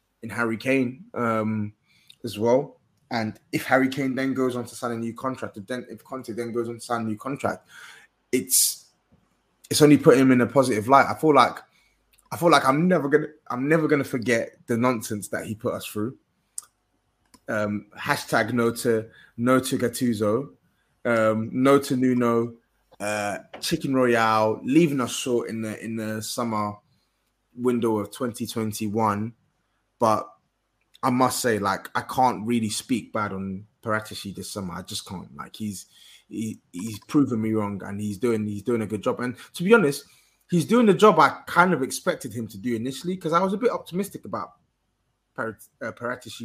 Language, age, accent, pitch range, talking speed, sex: English, 20-39, British, 110-140 Hz, 180 wpm, male